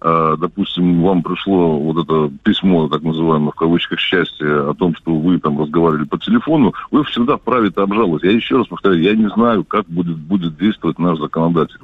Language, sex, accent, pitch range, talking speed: Russian, male, native, 80-95 Hz, 190 wpm